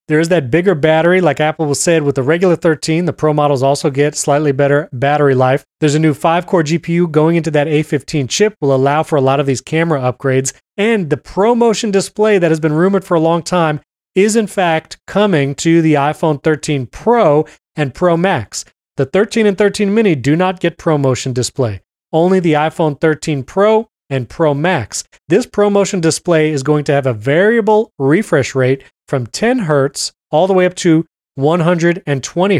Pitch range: 145-180 Hz